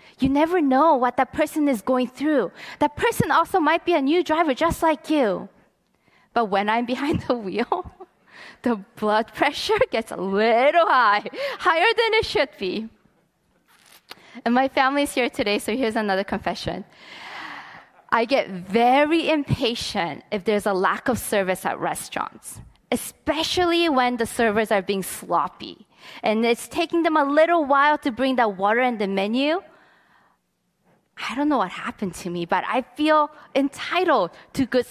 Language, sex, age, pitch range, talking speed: English, female, 20-39, 220-320 Hz, 160 wpm